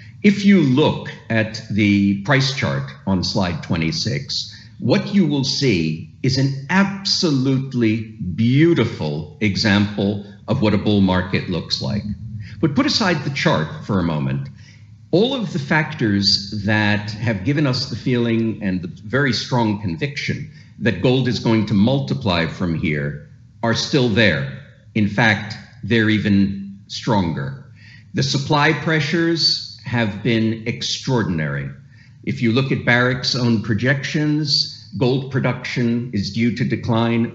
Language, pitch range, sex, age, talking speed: English, 105-135 Hz, male, 50-69, 135 wpm